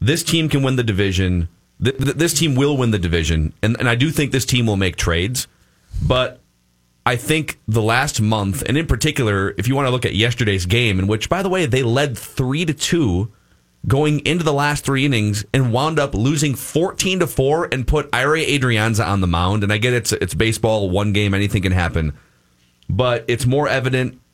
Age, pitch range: 30-49, 100-135 Hz